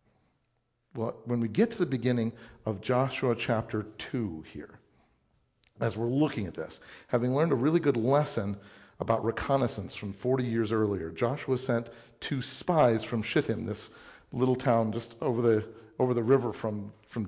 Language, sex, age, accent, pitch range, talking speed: English, male, 50-69, American, 110-140 Hz, 160 wpm